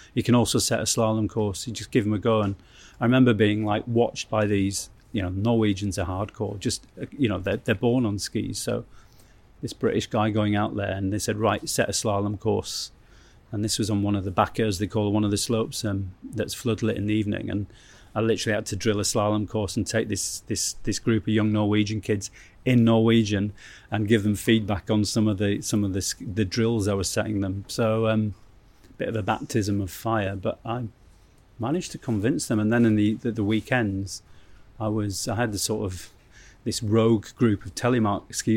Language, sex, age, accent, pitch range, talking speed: English, male, 30-49, British, 100-115 Hz, 220 wpm